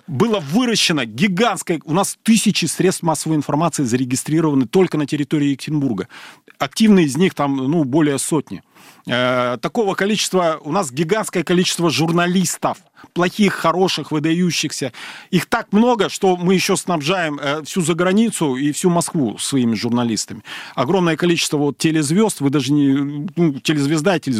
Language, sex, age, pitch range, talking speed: Russian, male, 40-59, 145-190 Hz, 135 wpm